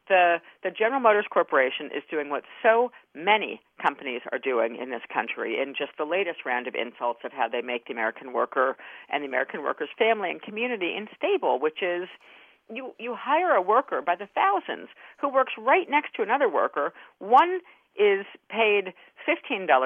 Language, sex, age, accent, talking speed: English, female, 50-69, American, 180 wpm